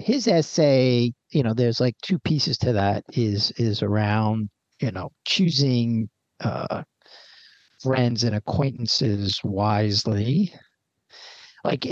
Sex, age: male, 50-69